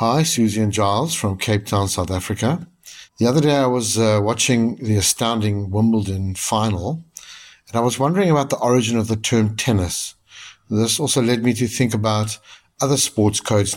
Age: 60-79